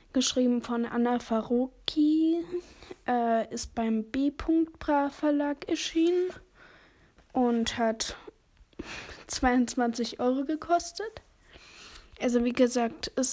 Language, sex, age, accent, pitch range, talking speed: German, female, 10-29, German, 235-270 Hz, 90 wpm